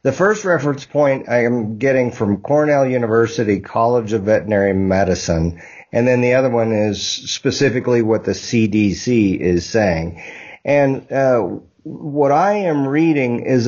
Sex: male